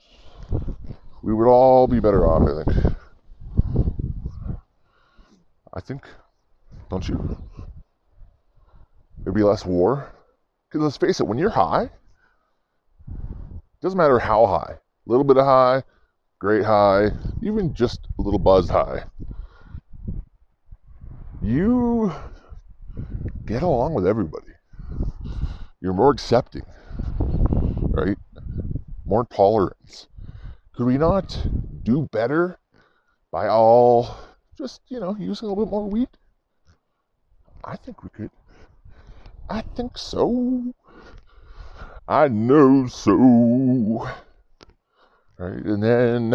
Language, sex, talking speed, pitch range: English, female, 105 wpm, 90-135 Hz